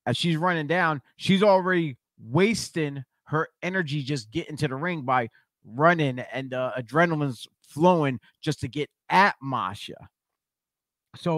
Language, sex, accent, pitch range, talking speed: English, male, American, 130-190 Hz, 135 wpm